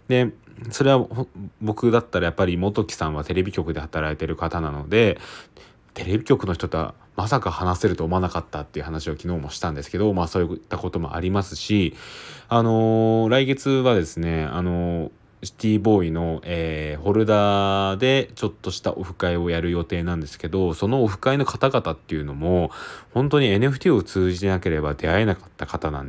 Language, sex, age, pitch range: Japanese, male, 20-39, 85-110 Hz